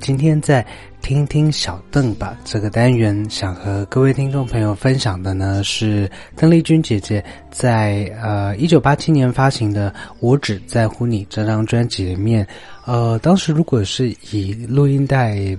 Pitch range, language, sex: 100-130 Hz, Chinese, male